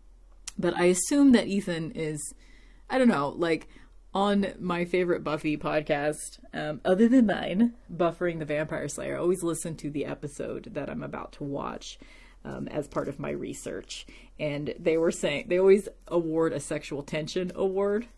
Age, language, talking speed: 30-49, English, 170 wpm